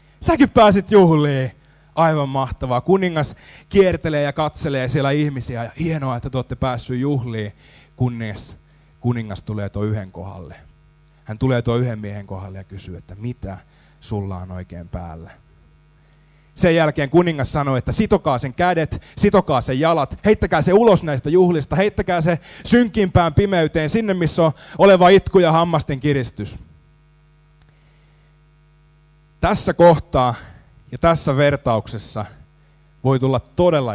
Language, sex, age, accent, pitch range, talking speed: Finnish, male, 30-49, native, 115-160 Hz, 130 wpm